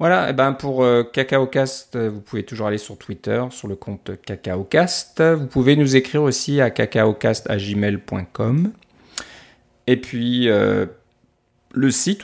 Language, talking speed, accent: French, 140 wpm, French